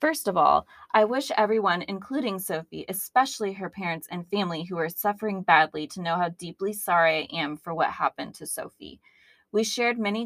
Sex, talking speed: female, 185 wpm